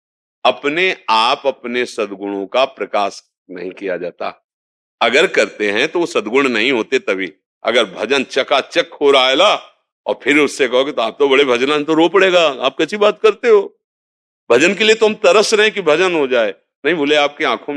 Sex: male